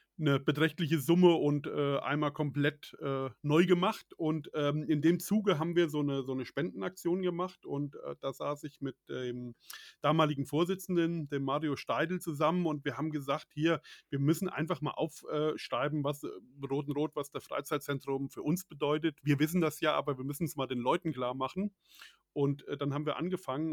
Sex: male